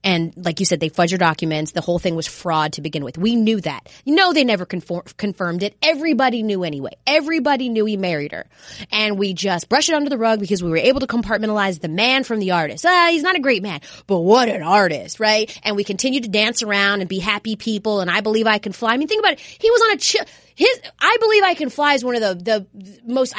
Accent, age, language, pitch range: American, 20-39, English, 205-315 Hz